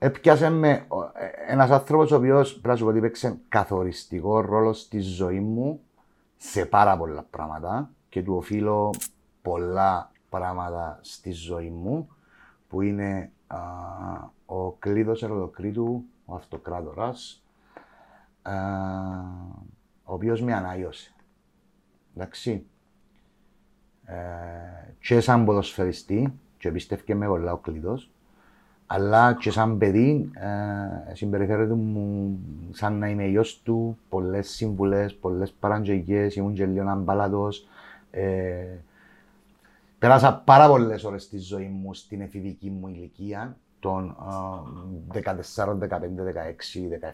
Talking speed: 100 wpm